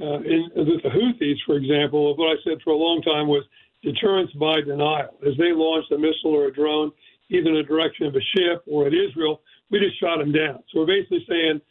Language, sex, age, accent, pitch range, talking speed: English, male, 50-69, American, 150-195 Hz, 230 wpm